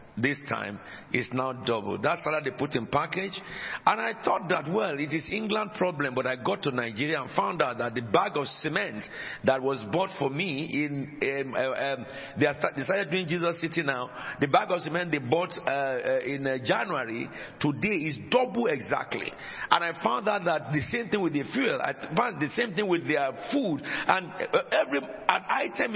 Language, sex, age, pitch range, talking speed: English, male, 50-69, 145-210 Hz, 210 wpm